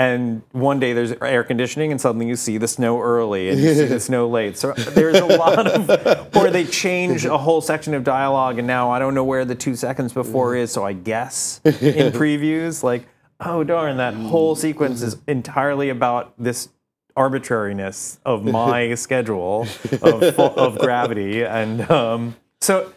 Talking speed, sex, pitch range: 180 wpm, male, 110-145 Hz